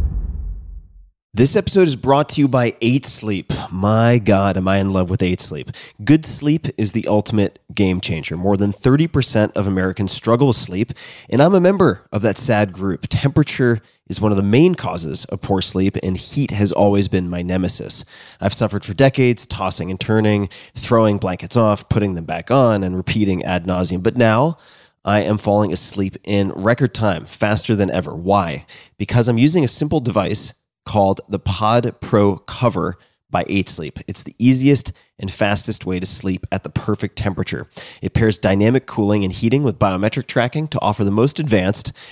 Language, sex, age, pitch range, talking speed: English, male, 30-49, 95-120 Hz, 180 wpm